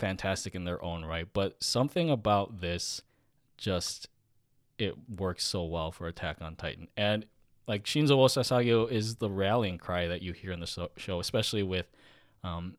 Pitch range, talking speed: 90-115 Hz, 165 wpm